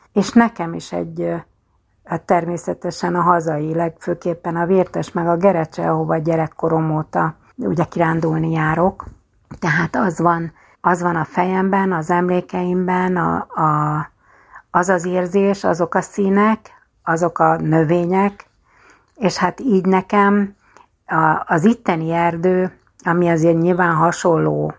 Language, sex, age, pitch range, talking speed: Hungarian, female, 60-79, 160-195 Hz, 110 wpm